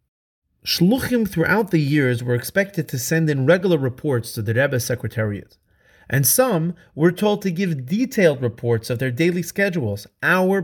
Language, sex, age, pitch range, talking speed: English, male, 30-49, 105-160 Hz, 160 wpm